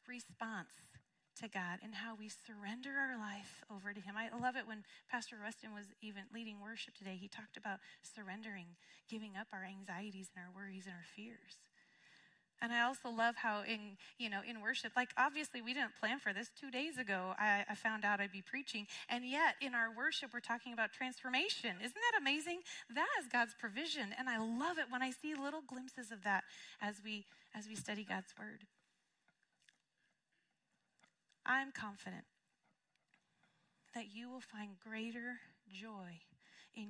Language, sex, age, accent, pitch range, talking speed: English, female, 30-49, American, 205-260 Hz, 170 wpm